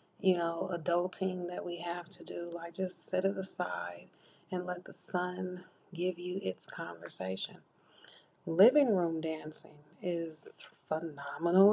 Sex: female